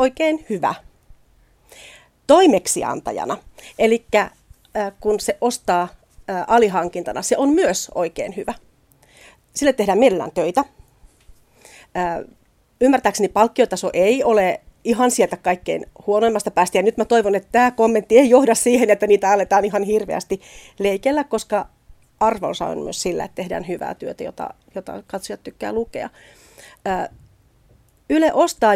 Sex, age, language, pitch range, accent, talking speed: female, 40-59, Finnish, 190-255 Hz, native, 120 wpm